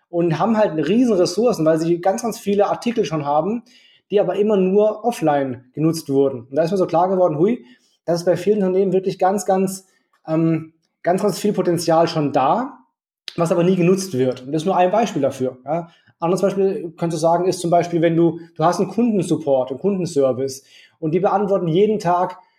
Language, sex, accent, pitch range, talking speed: German, male, German, 160-200 Hz, 200 wpm